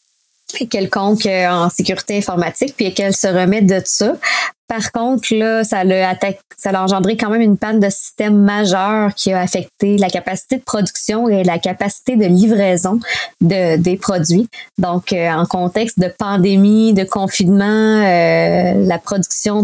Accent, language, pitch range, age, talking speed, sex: Canadian, French, 180-215 Hz, 20-39, 145 wpm, female